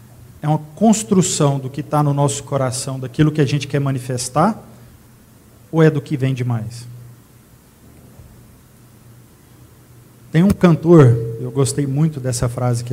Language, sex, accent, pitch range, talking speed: Portuguese, male, Brazilian, 125-180 Hz, 145 wpm